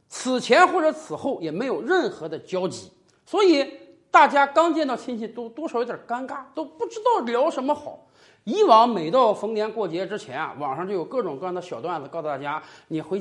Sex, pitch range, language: male, 215-325 Hz, Chinese